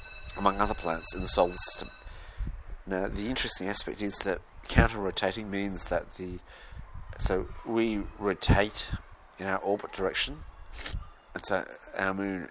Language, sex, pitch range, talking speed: English, male, 85-105 Hz, 135 wpm